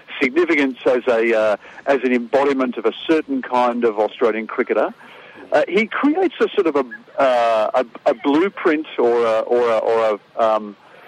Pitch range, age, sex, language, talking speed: 120-150 Hz, 50-69, male, English, 180 wpm